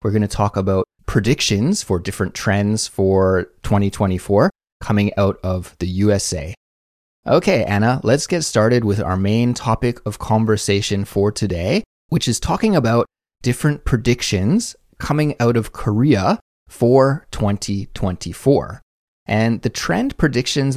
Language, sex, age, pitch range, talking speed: English, male, 30-49, 95-120 Hz, 130 wpm